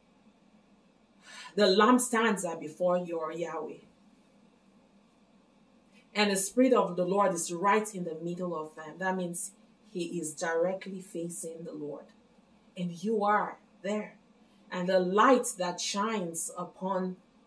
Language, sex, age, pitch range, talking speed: English, female, 30-49, 180-230 Hz, 125 wpm